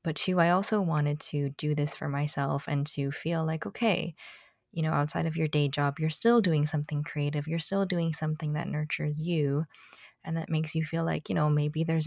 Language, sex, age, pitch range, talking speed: English, female, 20-39, 145-165 Hz, 220 wpm